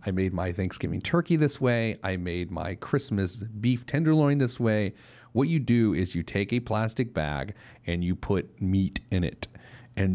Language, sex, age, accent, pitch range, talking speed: English, male, 40-59, American, 100-140 Hz, 185 wpm